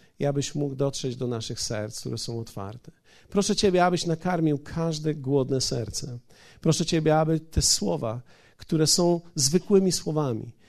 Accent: native